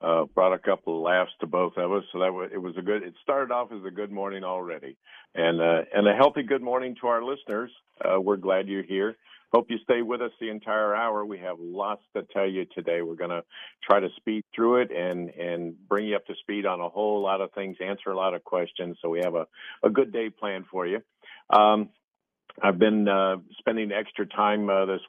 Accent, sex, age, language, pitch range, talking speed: American, male, 50-69, English, 90-105 Hz, 235 wpm